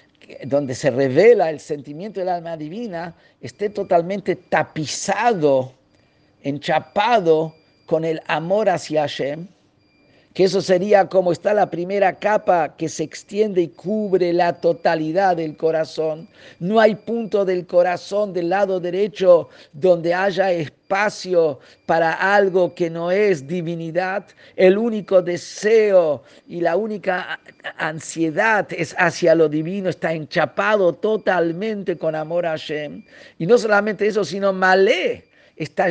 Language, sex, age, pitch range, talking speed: Spanish, male, 50-69, 160-200 Hz, 125 wpm